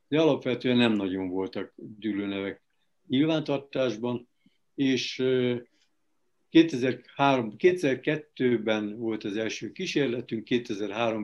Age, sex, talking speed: 60-79, male, 80 wpm